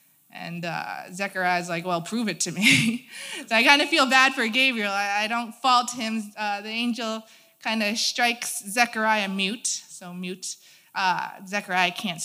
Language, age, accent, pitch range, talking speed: English, 20-39, American, 195-260 Hz, 170 wpm